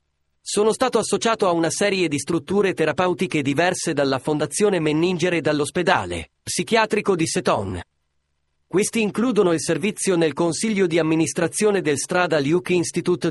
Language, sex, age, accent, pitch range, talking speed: Italian, male, 30-49, native, 145-195 Hz, 135 wpm